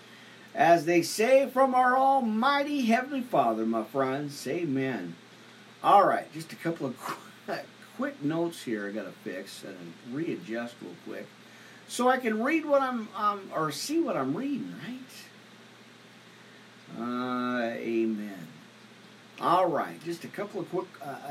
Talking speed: 145 wpm